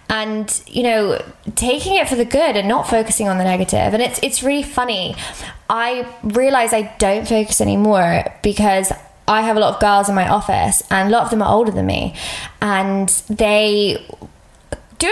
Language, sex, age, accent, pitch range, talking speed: English, female, 20-39, British, 195-240 Hz, 185 wpm